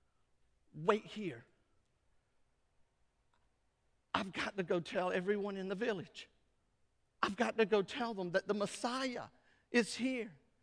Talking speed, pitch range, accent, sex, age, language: 125 wpm, 245-300 Hz, American, male, 50-69, English